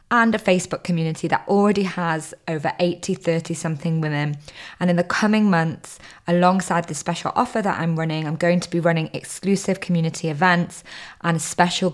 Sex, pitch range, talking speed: female, 160-185 Hz, 165 wpm